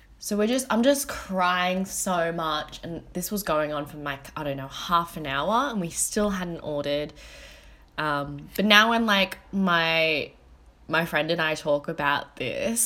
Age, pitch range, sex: 10-29, 150-195 Hz, female